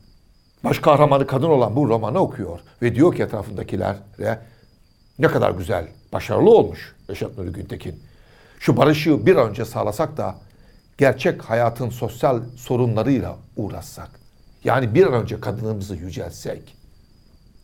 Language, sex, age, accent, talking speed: Turkish, male, 60-79, native, 120 wpm